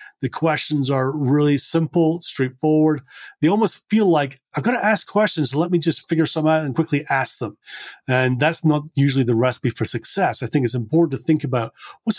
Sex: male